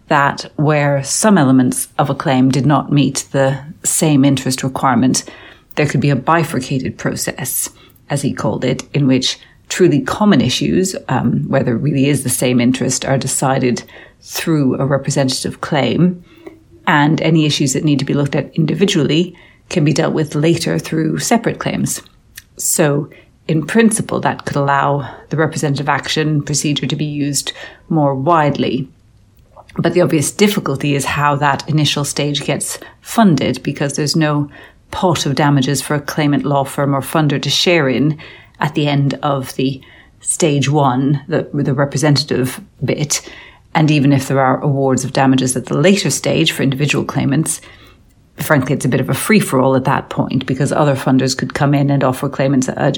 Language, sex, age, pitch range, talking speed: English, female, 40-59, 130-155 Hz, 170 wpm